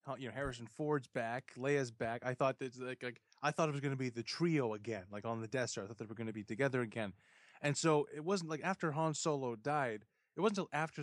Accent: American